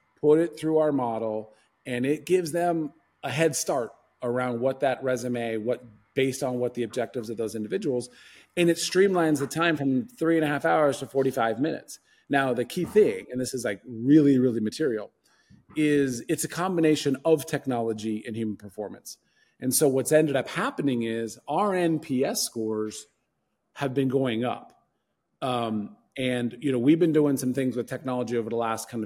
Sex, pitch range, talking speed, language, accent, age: male, 120-155 Hz, 180 wpm, English, American, 40-59